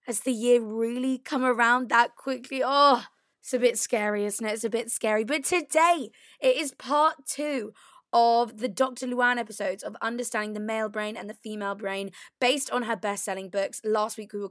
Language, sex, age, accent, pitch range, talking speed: English, female, 20-39, British, 205-250 Hz, 200 wpm